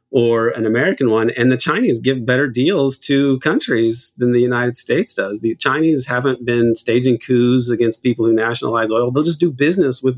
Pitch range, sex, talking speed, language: 115-135 Hz, male, 195 wpm, English